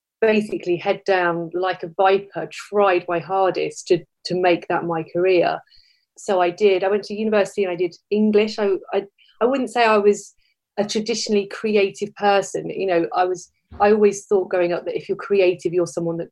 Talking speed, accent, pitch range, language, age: 195 wpm, British, 180-215 Hz, English, 30-49